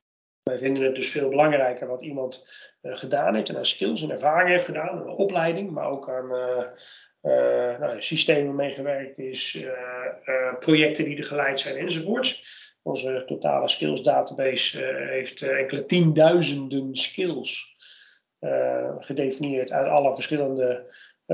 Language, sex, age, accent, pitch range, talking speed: Dutch, male, 30-49, Dutch, 130-165 Hz, 150 wpm